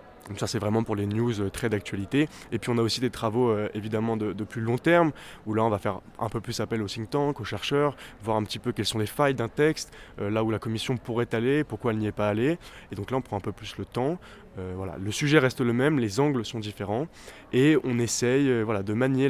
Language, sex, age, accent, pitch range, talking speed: French, male, 20-39, French, 105-125 Hz, 260 wpm